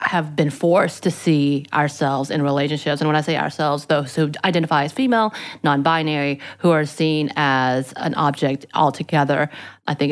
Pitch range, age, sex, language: 140-160 Hz, 30-49, female, English